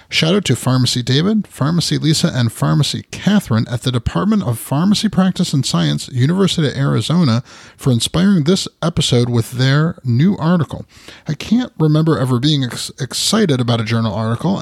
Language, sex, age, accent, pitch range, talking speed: English, male, 30-49, American, 120-160 Hz, 160 wpm